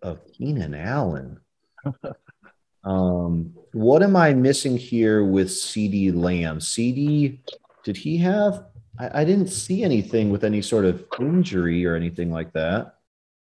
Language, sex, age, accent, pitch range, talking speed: English, male, 30-49, American, 90-135 Hz, 135 wpm